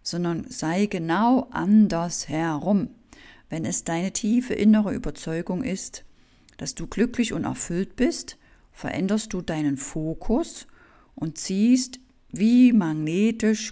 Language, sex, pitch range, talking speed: German, female, 180-225 Hz, 115 wpm